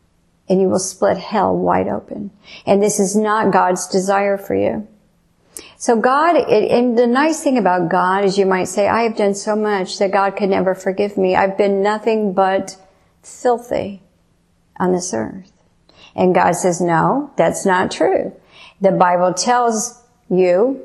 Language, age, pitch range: English, 50-69, 180-215 Hz